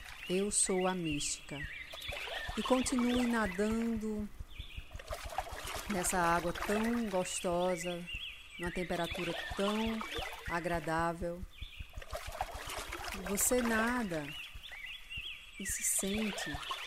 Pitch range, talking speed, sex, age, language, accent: 170-210 Hz, 70 wpm, female, 50-69, Portuguese, Brazilian